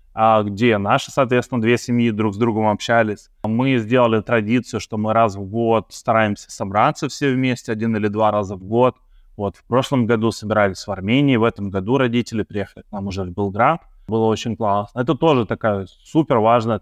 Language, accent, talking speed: Russian, native, 185 wpm